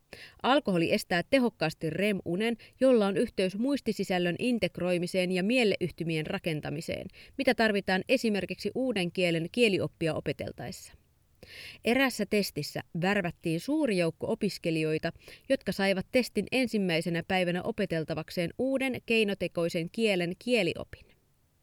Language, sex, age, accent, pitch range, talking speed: Finnish, female, 30-49, native, 170-230 Hz, 95 wpm